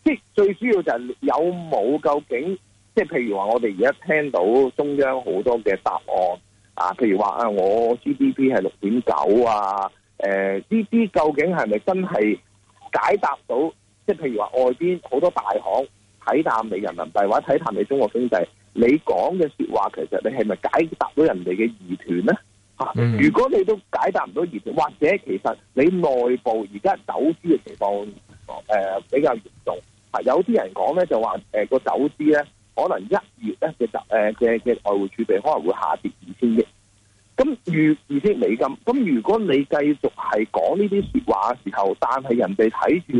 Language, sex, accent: Chinese, male, native